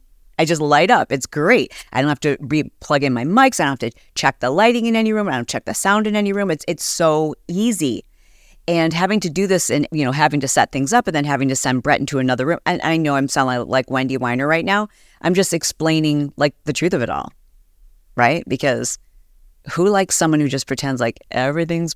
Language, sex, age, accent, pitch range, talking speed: English, female, 40-59, American, 135-175 Hz, 245 wpm